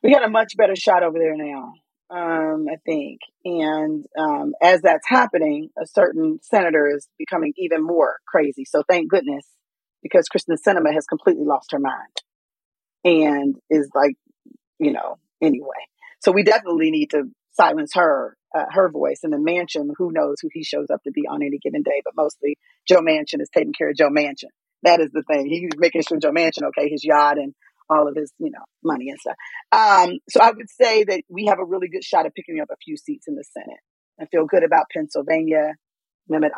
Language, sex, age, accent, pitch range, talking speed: English, female, 30-49, American, 150-225 Hz, 205 wpm